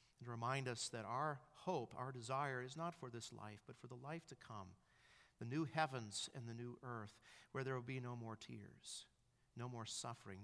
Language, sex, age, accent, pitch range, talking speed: English, male, 50-69, American, 110-130 Hz, 205 wpm